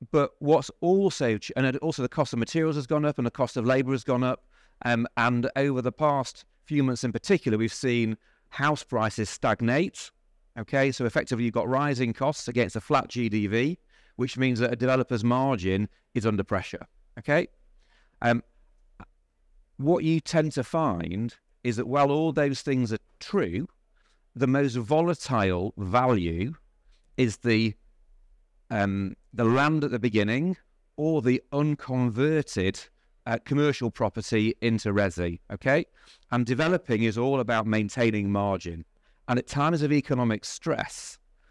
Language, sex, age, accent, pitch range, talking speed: English, male, 40-59, British, 110-135 Hz, 150 wpm